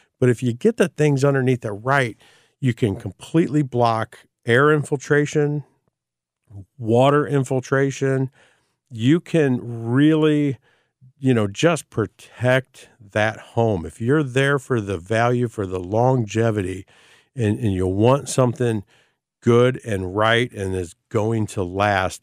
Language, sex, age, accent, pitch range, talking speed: English, male, 50-69, American, 105-130 Hz, 130 wpm